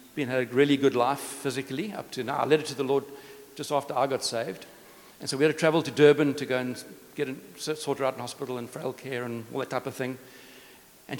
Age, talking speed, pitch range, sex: 60-79, 250 wpm, 125-155 Hz, male